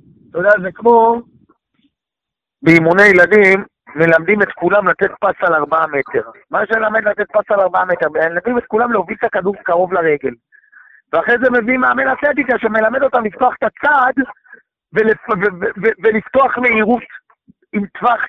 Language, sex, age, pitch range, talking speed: Hebrew, male, 50-69, 190-235 Hz, 160 wpm